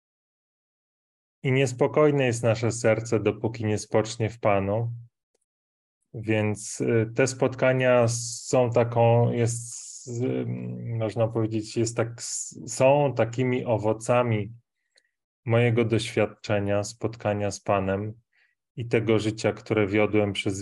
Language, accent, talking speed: Polish, native, 100 wpm